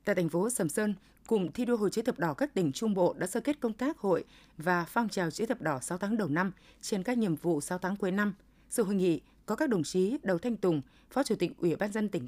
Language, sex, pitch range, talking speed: Vietnamese, female, 170-235 Hz, 280 wpm